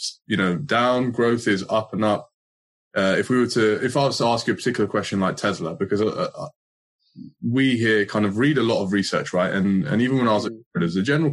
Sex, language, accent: male, English, British